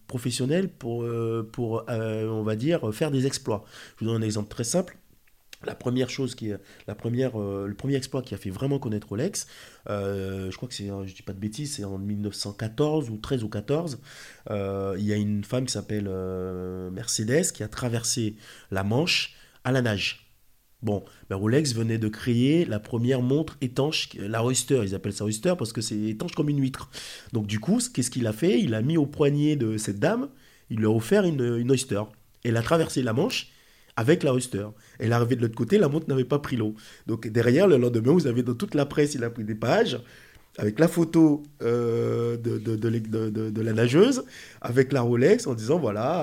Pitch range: 110-140 Hz